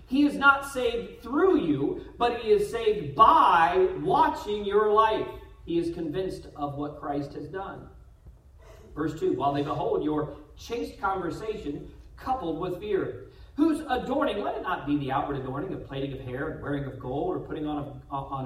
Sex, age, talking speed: male, 40-59, 180 wpm